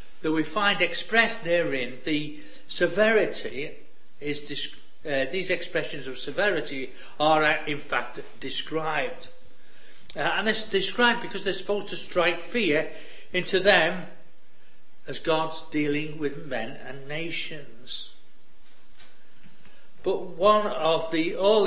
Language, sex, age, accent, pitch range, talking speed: English, male, 60-79, British, 150-195 Hz, 115 wpm